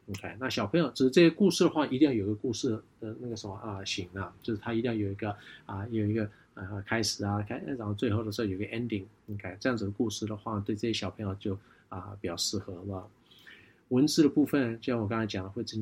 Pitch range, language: 100-125 Hz, Chinese